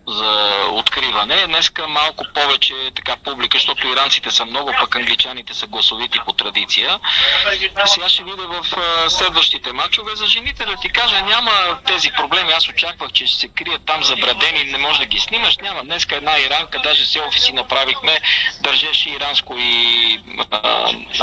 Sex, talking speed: male, 160 wpm